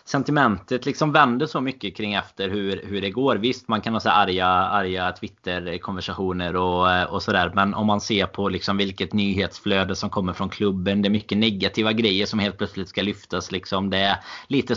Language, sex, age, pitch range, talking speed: Swedish, male, 20-39, 95-110 Hz, 195 wpm